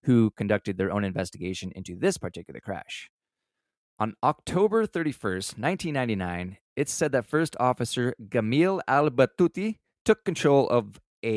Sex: male